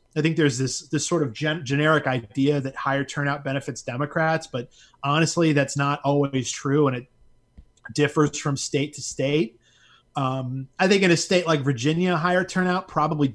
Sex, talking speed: male, 175 wpm